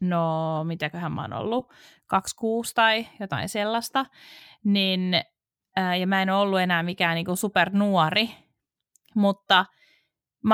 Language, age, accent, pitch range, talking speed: Finnish, 30-49, native, 175-220 Hz, 125 wpm